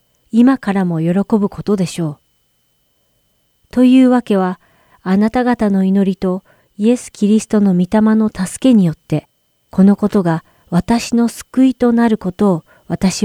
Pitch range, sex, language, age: 175-225 Hz, female, Japanese, 40-59